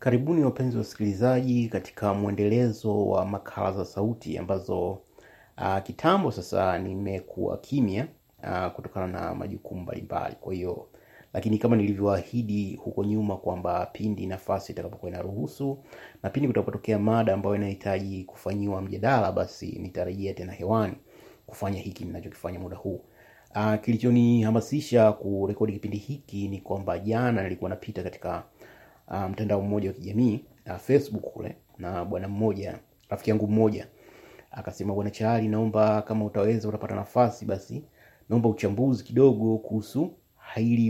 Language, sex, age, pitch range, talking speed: Swahili, male, 30-49, 100-115 Hz, 130 wpm